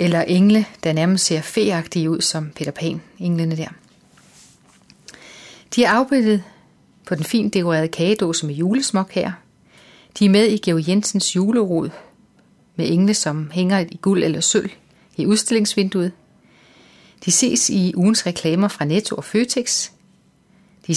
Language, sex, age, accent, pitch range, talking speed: Danish, female, 30-49, native, 165-205 Hz, 145 wpm